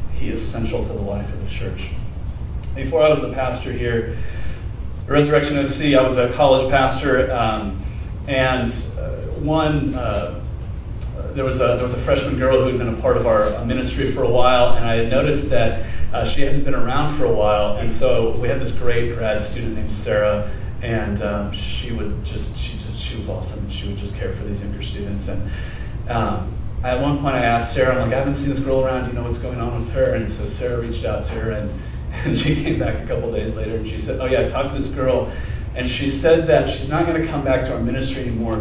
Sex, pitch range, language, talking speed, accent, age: male, 105-130 Hz, English, 230 wpm, American, 30-49